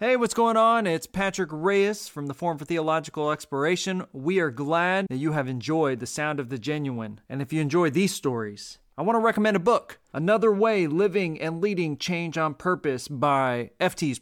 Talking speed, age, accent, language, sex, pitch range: 200 wpm, 30-49, American, English, male, 130-175 Hz